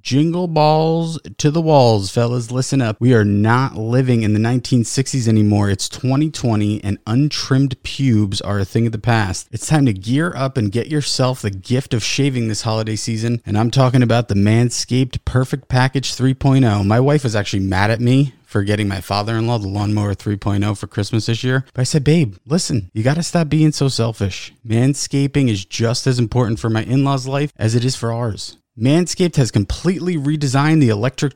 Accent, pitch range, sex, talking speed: American, 110-140 Hz, male, 195 wpm